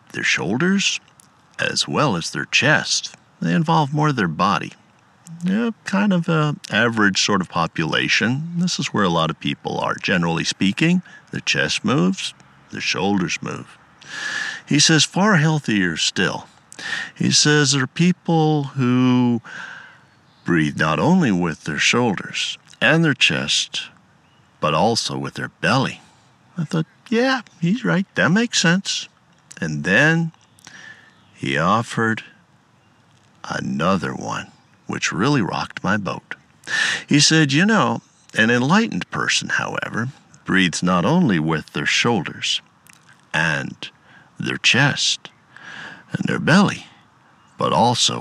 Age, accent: 60-79, American